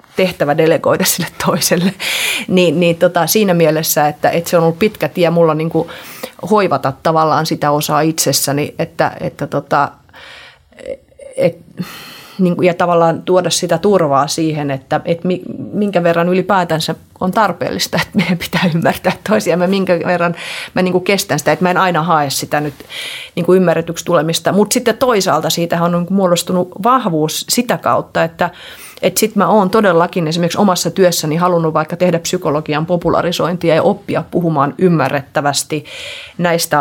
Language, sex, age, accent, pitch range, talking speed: Finnish, female, 30-49, native, 155-180 Hz, 150 wpm